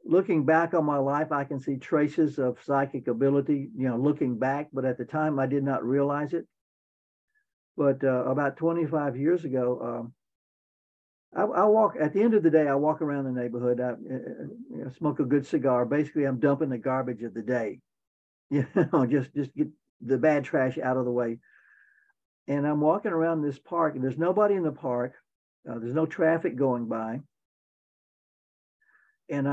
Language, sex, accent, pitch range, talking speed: English, male, American, 130-160 Hz, 190 wpm